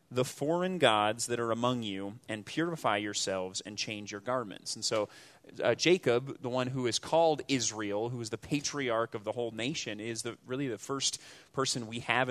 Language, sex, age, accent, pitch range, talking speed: English, male, 30-49, American, 110-140 Hz, 195 wpm